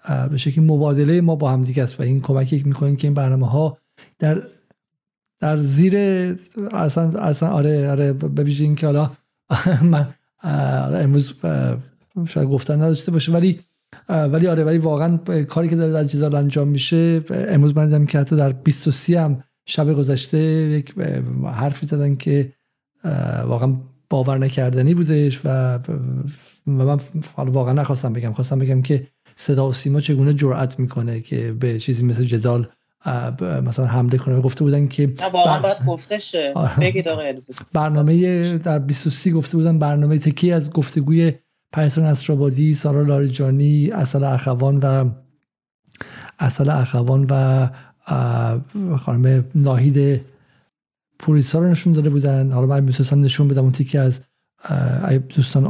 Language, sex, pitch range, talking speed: Persian, male, 130-155 Hz, 140 wpm